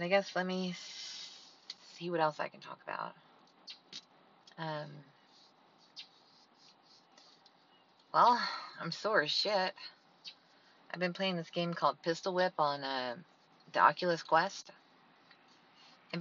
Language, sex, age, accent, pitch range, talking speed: English, female, 20-39, American, 145-185 Hz, 115 wpm